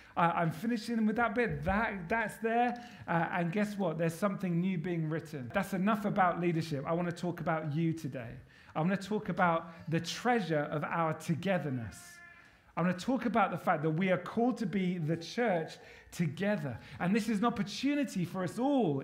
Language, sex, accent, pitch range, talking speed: English, male, British, 165-215 Hz, 195 wpm